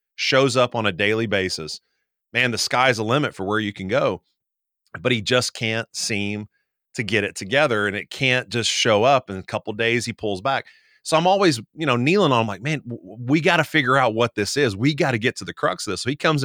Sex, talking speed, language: male, 260 wpm, English